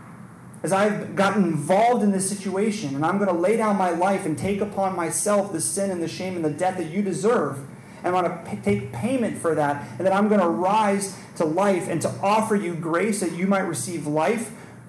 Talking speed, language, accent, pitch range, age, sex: 225 wpm, English, American, 145-195 Hz, 30-49, male